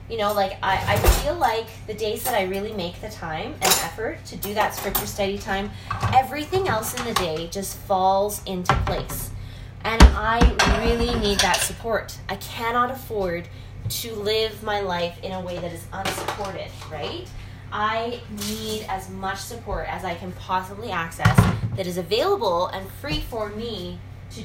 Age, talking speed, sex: 10-29, 170 wpm, female